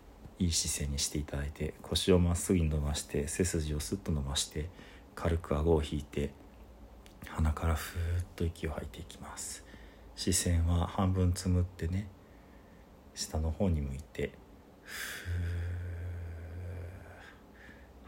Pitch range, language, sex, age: 75-95 Hz, Japanese, male, 40-59